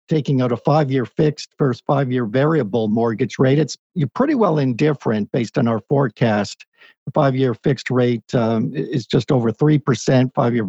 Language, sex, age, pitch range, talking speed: English, male, 50-69, 120-150 Hz, 170 wpm